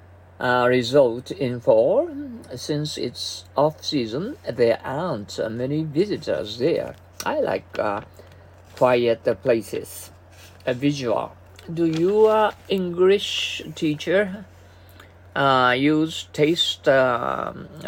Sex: male